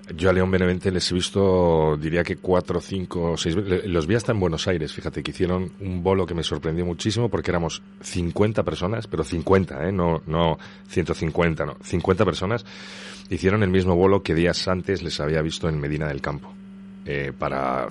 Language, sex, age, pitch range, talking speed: Spanish, male, 30-49, 80-100 Hz, 190 wpm